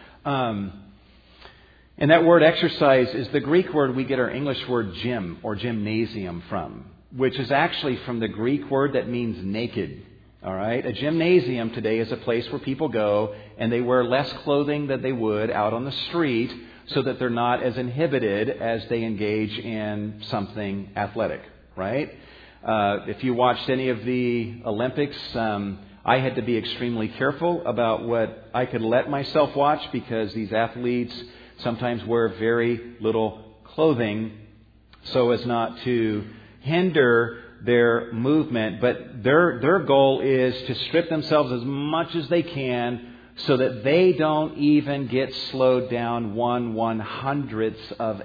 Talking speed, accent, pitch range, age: 155 wpm, American, 110-135 Hz, 50-69